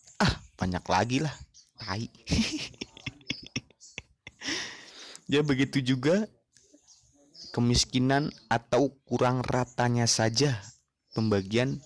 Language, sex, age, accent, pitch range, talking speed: Indonesian, male, 30-49, native, 105-140 Hz, 65 wpm